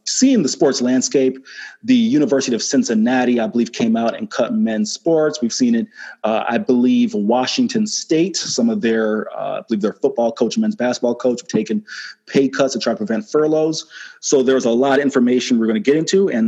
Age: 30-49